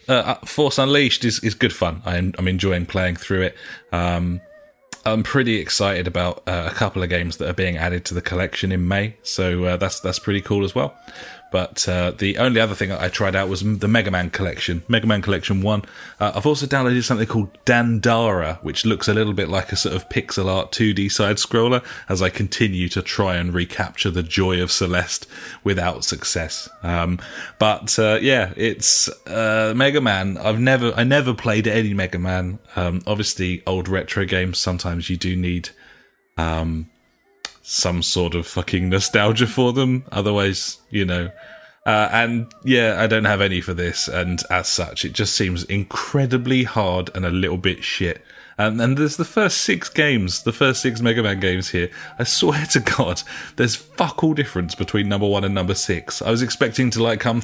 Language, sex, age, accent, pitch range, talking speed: English, male, 30-49, British, 90-115 Hz, 195 wpm